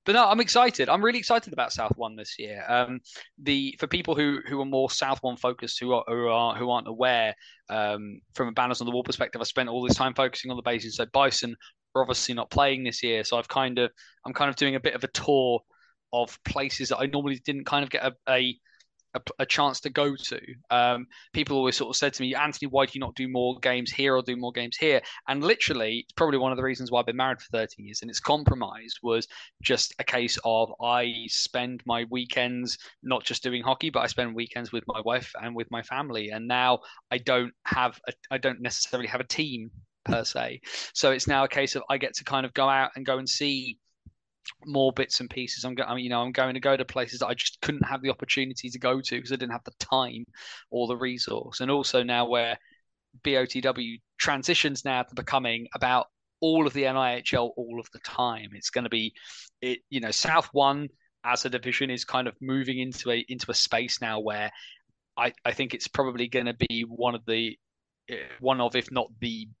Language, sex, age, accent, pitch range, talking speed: English, male, 20-39, British, 120-135 Hz, 230 wpm